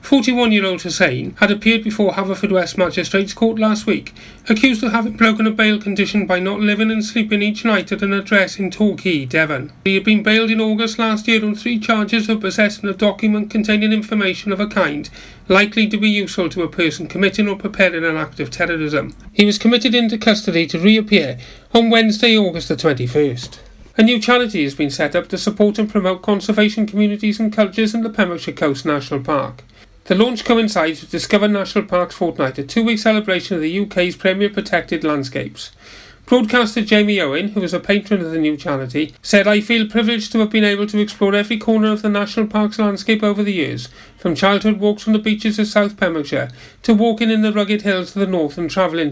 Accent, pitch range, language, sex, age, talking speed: British, 175-220 Hz, English, male, 40-59, 200 wpm